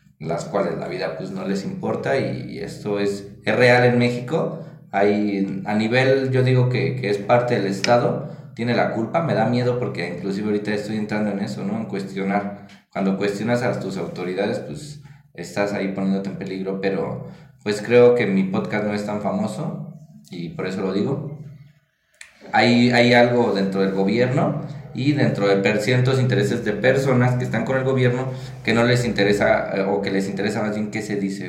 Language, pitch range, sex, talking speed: Spanish, 100-135 Hz, male, 190 wpm